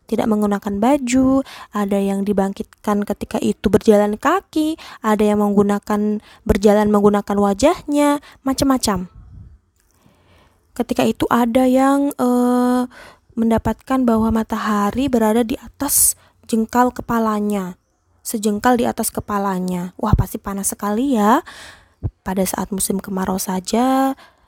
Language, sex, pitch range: Indonesian, female, 200-255 Hz